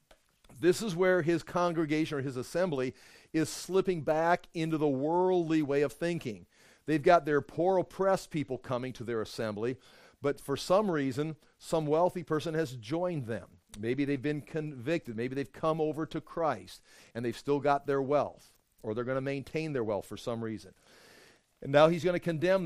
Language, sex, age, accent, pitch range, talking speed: English, male, 50-69, American, 130-165 Hz, 185 wpm